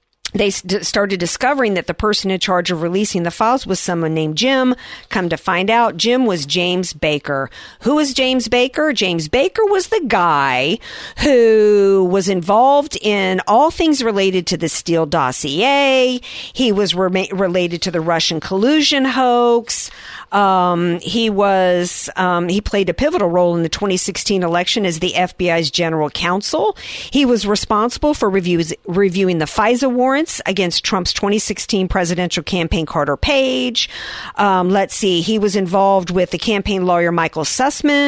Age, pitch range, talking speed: 50-69, 175-245 Hz, 155 wpm